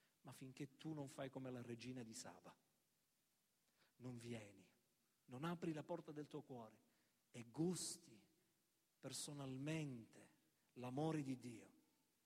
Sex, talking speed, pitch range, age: male, 120 wpm, 135-205 Hz, 50-69